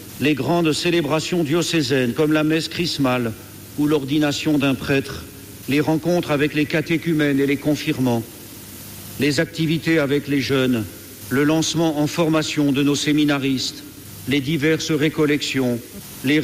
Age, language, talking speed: 60-79, French, 130 wpm